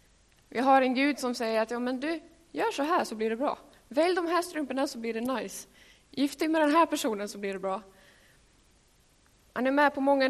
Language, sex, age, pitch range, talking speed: Swedish, female, 20-39, 210-270 Hz, 225 wpm